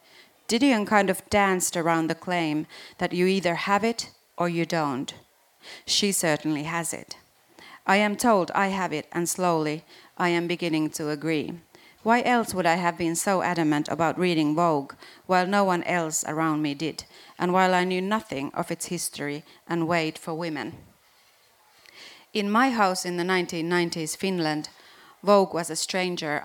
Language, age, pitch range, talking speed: Finnish, 30-49, 160-180 Hz, 165 wpm